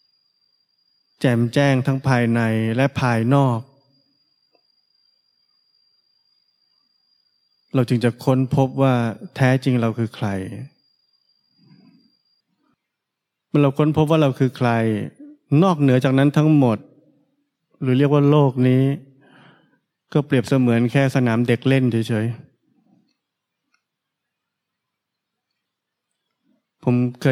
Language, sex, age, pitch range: Thai, male, 20-39, 120-150 Hz